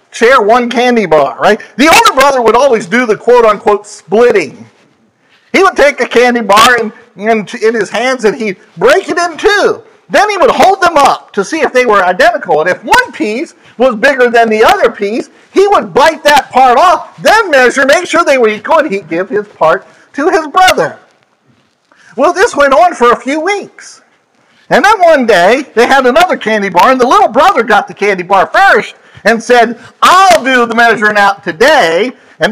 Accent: American